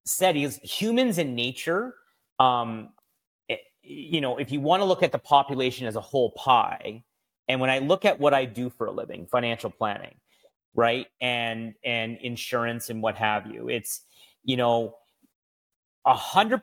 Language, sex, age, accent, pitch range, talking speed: English, male, 30-49, American, 120-155 Hz, 165 wpm